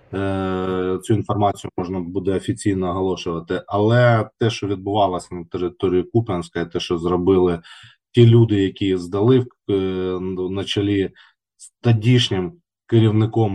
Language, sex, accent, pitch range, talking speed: Ukrainian, male, native, 95-120 Hz, 110 wpm